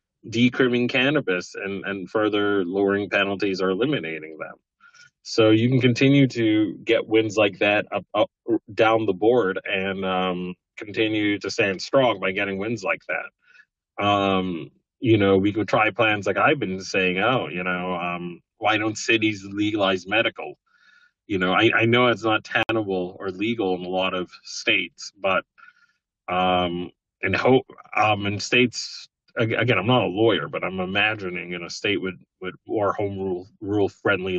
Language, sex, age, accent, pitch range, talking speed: English, male, 30-49, American, 95-110 Hz, 165 wpm